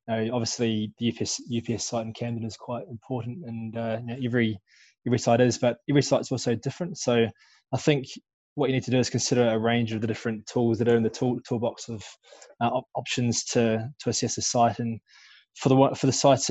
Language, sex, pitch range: English, male, 115-125 Hz